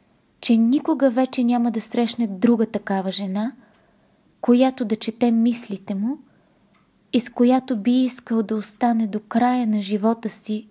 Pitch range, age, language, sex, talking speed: 210-245 Hz, 20-39, Bulgarian, female, 145 wpm